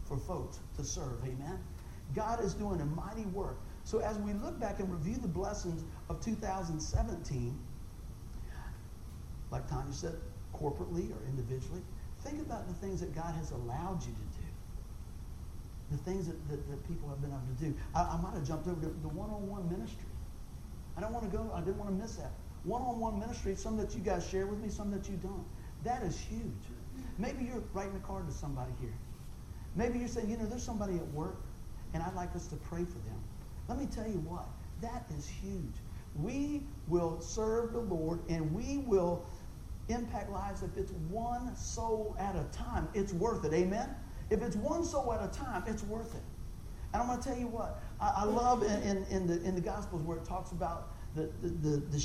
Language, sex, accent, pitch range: English, male, American, 130-210 Hz